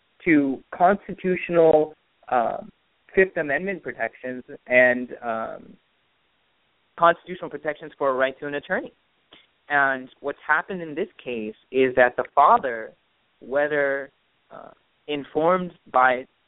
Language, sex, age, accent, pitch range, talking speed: English, male, 20-39, American, 130-160 Hz, 110 wpm